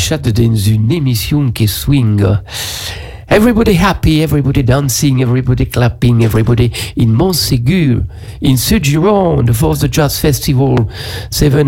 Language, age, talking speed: French, 50-69, 115 wpm